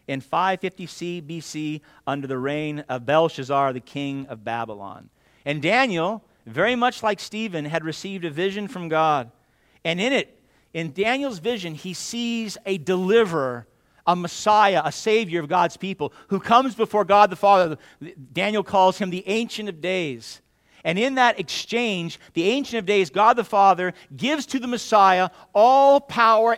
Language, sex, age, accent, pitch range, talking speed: English, male, 50-69, American, 140-200 Hz, 160 wpm